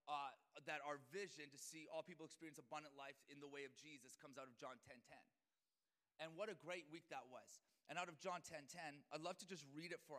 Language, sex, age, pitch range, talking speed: English, male, 30-49, 140-165 Hz, 245 wpm